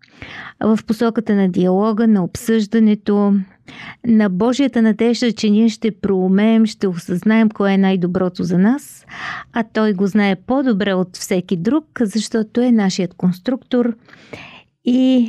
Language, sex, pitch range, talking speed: Bulgarian, female, 190-230 Hz, 130 wpm